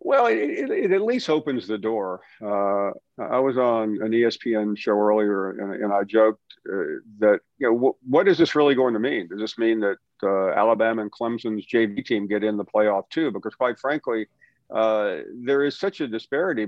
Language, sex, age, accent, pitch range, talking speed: English, male, 50-69, American, 110-140 Hz, 205 wpm